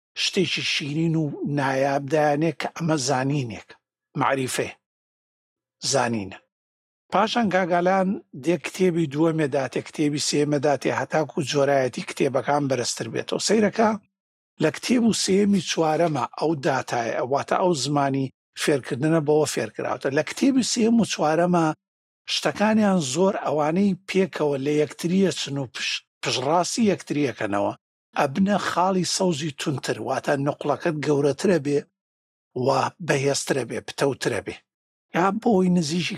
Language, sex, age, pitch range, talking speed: Arabic, male, 60-79, 140-180 Hz, 75 wpm